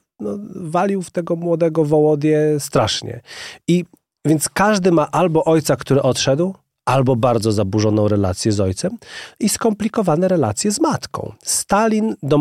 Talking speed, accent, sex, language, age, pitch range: 130 wpm, native, male, Polish, 30-49, 115-150 Hz